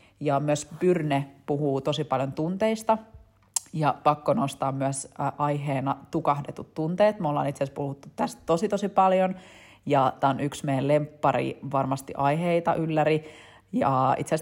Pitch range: 140-160 Hz